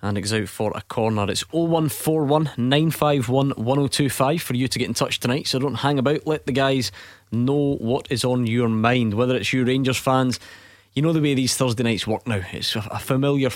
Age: 20-39